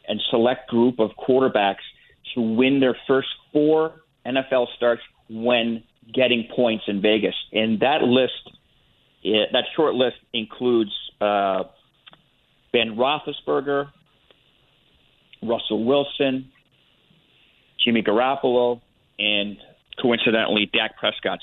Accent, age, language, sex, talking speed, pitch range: American, 40-59, English, male, 100 wpm, 115-140 Hz